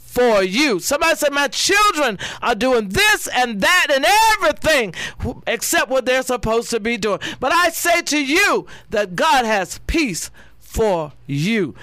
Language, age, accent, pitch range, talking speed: English, 40-59, American, 150-235 Hz, 155 wpm